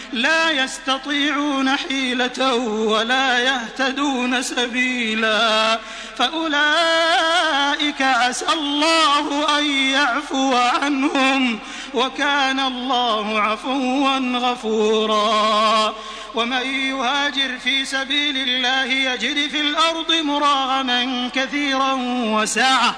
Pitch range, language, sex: 245-285 Hz, Arabic, male